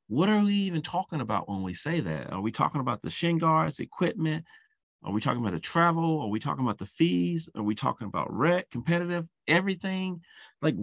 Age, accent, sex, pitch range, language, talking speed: 40-59, American, male, 100-160 Hz, English, 210 wpm